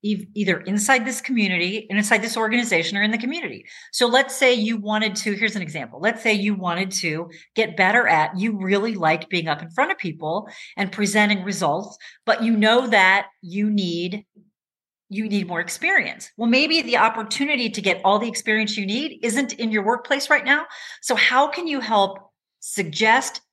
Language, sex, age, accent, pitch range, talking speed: English, female, 40-59, American, 195-240 Hz, 190 wpm